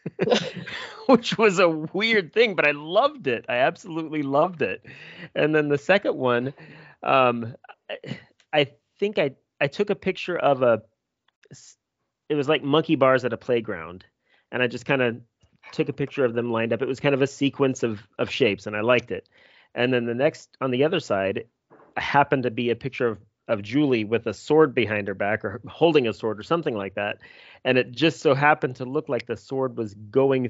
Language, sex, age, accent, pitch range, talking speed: English, male, 30-49, American, 120-155 Hz, 205 wpm